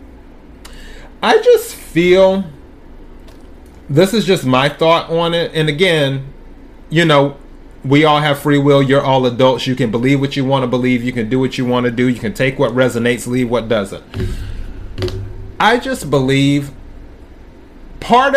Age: 30-49